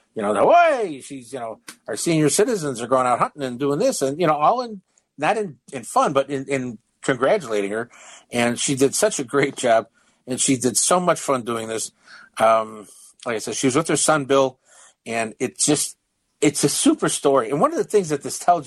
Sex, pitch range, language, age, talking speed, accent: male, 120-165 Hz, English, 50-69, 230 wpm, American